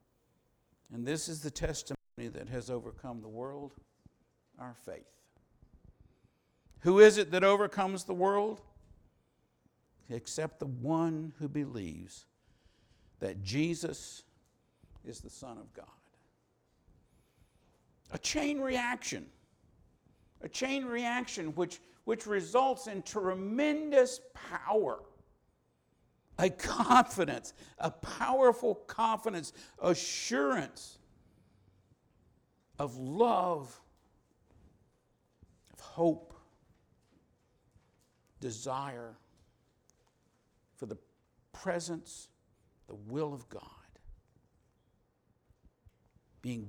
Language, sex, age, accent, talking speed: English, male, 60-79, American, 80 wpm